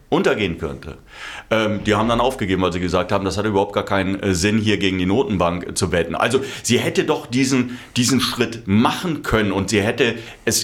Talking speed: 195 wpm